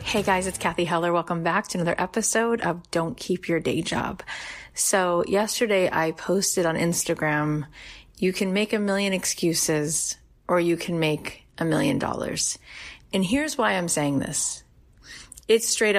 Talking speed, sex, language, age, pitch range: 160 wpm, female, English, 30-49, 155-190 Hz